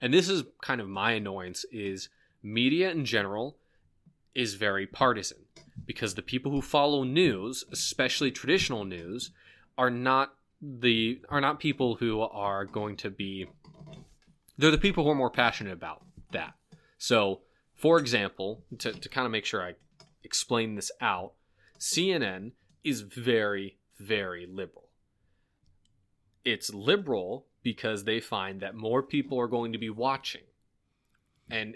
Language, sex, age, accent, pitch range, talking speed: English, male, 20-39, American, 100-130 Hz, 140 wpm